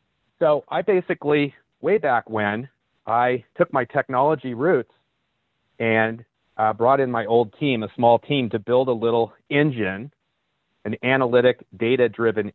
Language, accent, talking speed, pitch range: English, American, 145 wpm, 110-135 Hz